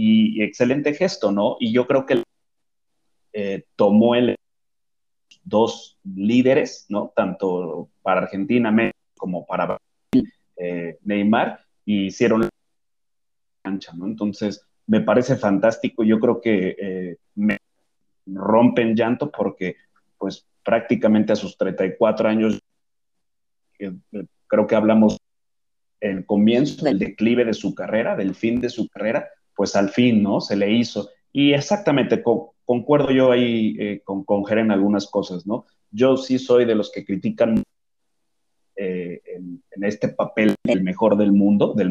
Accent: Mexican